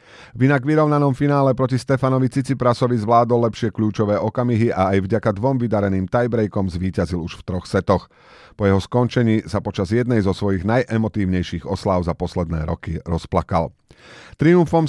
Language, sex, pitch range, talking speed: Slovak, male, 95-120 Hz, 150 wpm